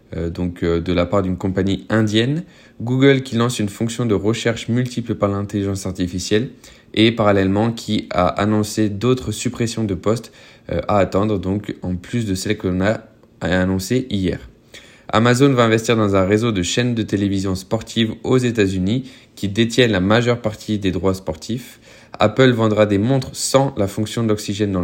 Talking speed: 170 wpm